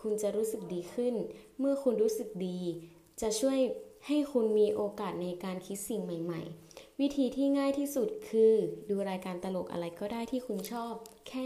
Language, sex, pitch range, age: Thai, female, 195-235 Hz, 20-39